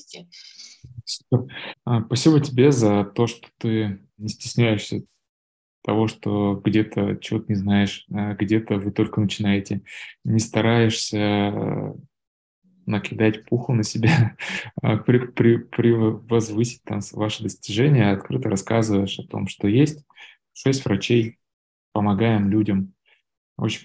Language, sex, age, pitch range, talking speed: Russian, male, 20-39, 100-115 Hz, 100 wpm